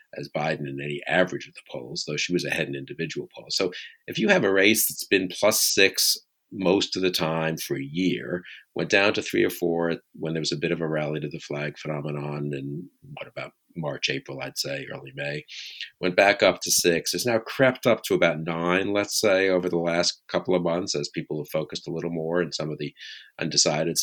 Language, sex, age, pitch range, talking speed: English, male, 50-69, 75-90 Hz, 225 wpm